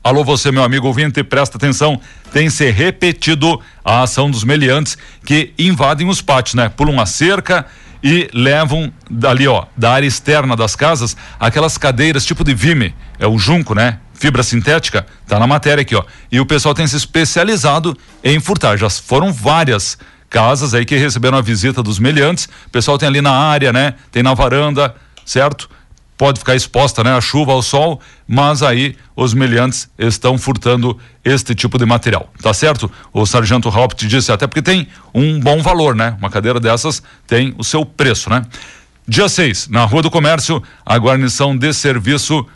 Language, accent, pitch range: Portuguese, Brazilian, 120-150 Hz